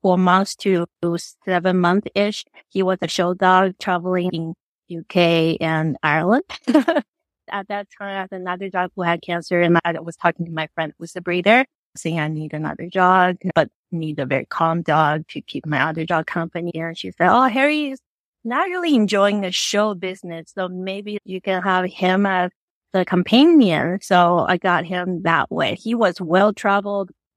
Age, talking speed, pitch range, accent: 30-49, 180 wpm, 170-205 Hz, American